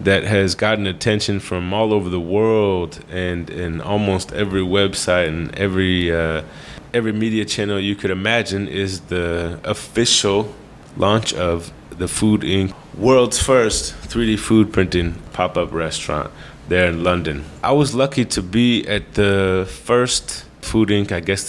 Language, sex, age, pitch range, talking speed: English, male, 20-39, 85-105 Hz, 150 wpm